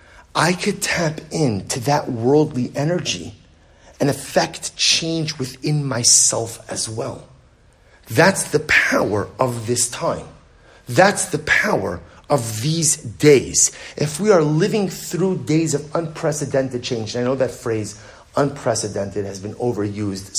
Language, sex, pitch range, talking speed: English, male, 120-160 Hz, 125 wpm